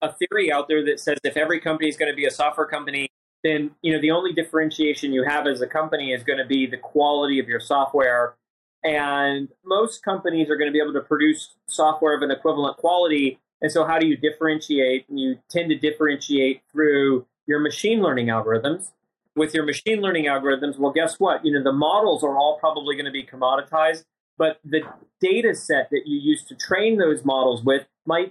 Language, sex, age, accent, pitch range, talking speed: English, male, 30-49, American, 140-160 Hz, 210 wpm